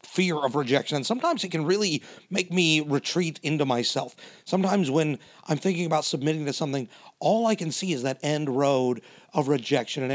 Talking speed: 190 wpm